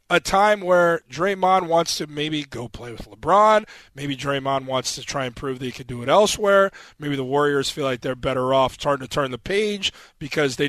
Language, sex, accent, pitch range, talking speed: English, male, American, 145-185 Hz, 220 wpm